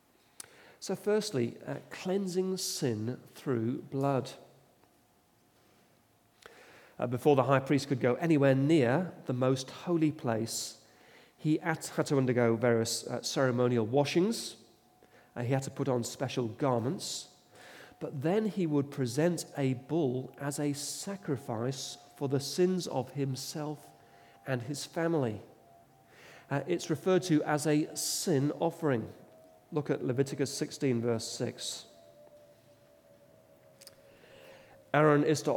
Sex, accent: male, British